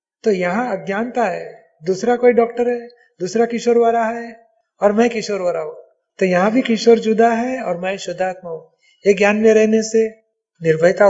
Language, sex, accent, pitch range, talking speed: Hindi, male, native, 190-235 Hz, 180 wpm